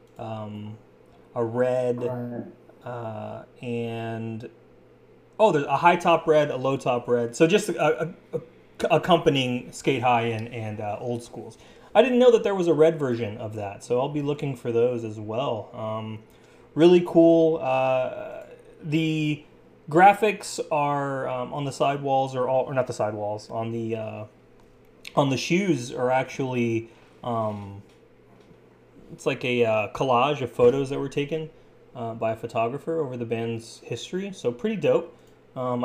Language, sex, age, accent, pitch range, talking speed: English, male, 20-39, American, 115-155 Hz, 160 wpm